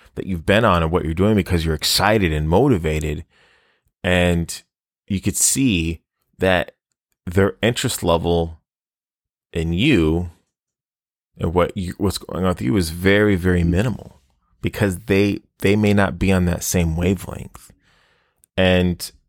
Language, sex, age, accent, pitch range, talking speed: English, male, 30-49, American, 85-100 Hz, 145 wpm